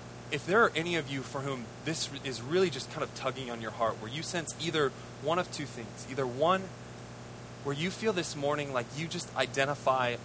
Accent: American